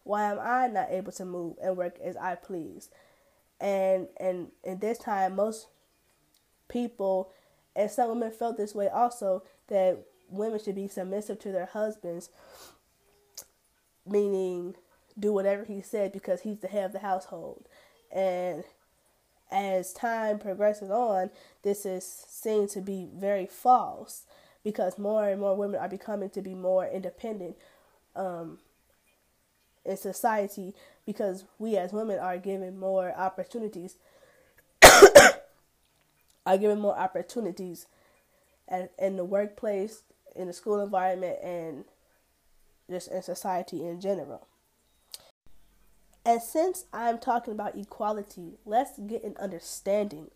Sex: female